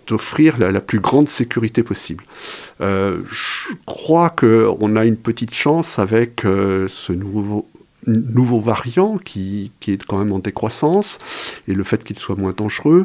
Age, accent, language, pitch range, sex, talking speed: 50-69, French, French, 95-120 Hz, male, 160 wpm